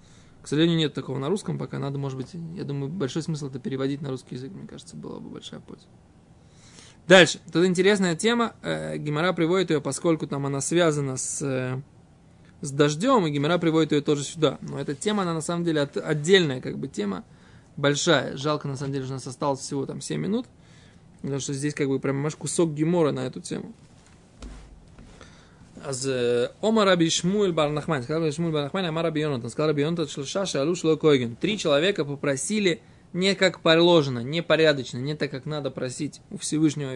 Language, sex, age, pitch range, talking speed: Russian, male, 20-39, 140-175 Hz, 155 wpm